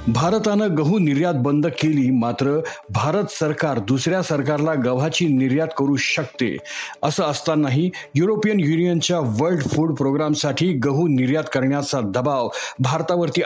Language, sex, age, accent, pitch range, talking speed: Marathi, male, 50-69, native, 135-170 Hz, 115 wpm